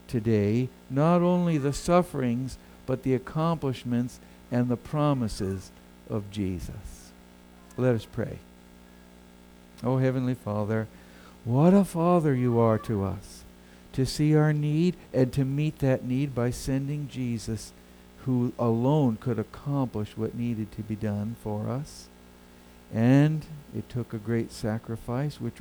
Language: English